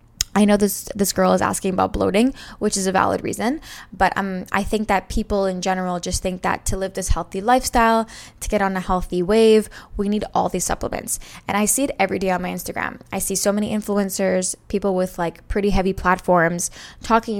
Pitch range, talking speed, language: 185-225 Hz, 215 wpm, English